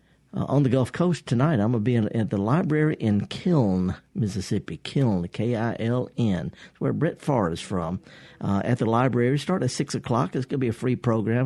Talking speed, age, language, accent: 200 wpm, 50-69, English, American